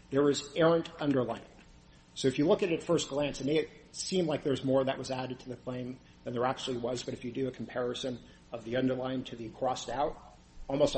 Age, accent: 50-69, American